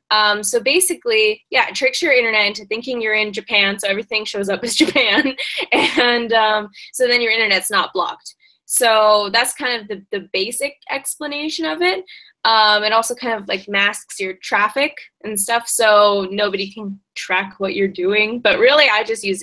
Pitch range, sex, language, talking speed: 200-290 Hz, female, English, 185 wpm